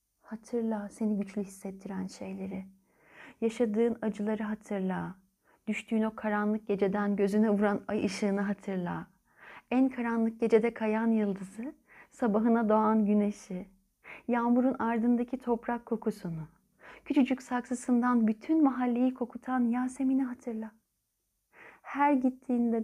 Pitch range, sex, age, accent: 200-245 Hz, female, 30-49, native